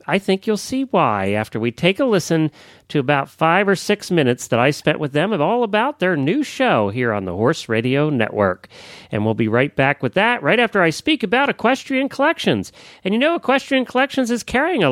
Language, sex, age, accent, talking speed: English, male, 40-59, American, 220 wpm